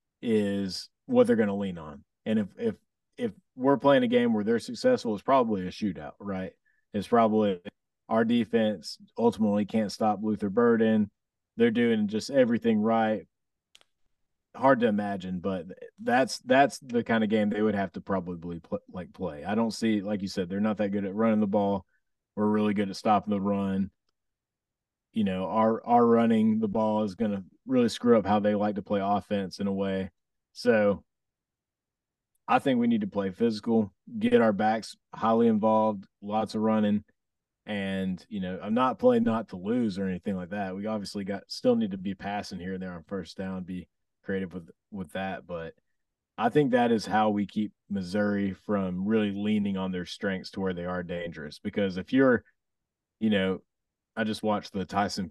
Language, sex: English, male